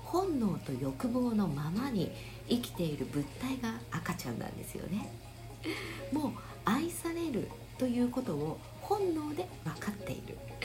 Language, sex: Japanese, female